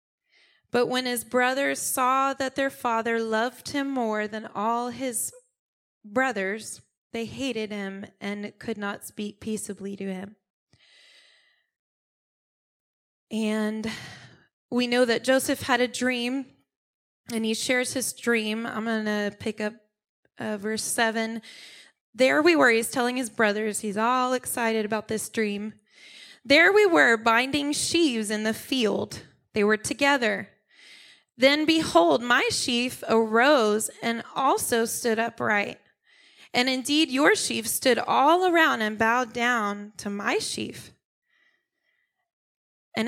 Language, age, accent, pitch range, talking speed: English, 20-39, American, 220-280 Hz, 130 wpm